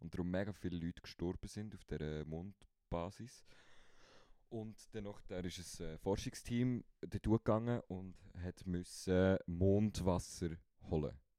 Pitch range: 80-95 Hz